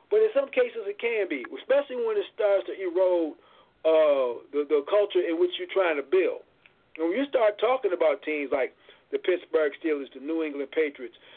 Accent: American